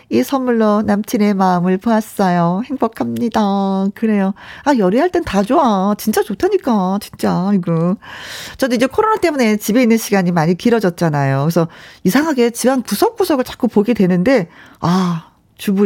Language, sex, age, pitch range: Korean, female, 40-59, 185-265 Hz